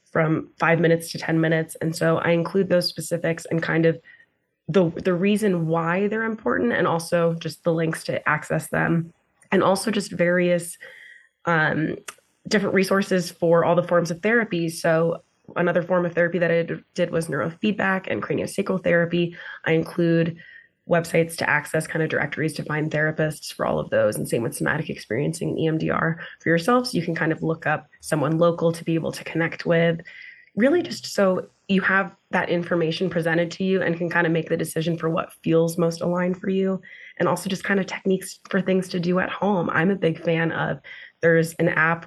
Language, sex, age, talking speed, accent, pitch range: English, female, 20-39, 195 wpm, American, 165-185 Hz